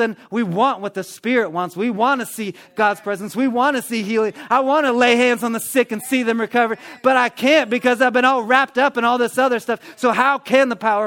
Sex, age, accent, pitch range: male, 30-49, American, 135-220 Hz